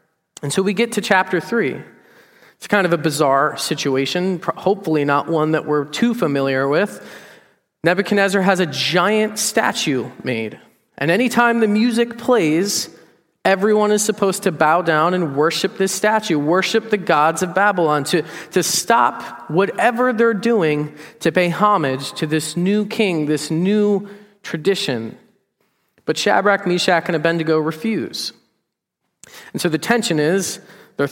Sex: male